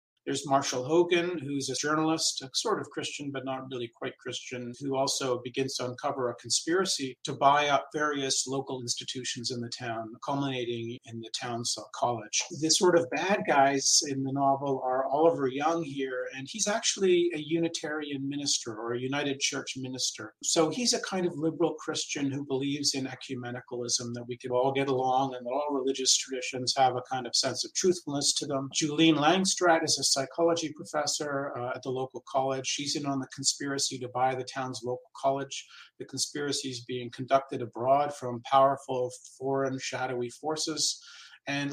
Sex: male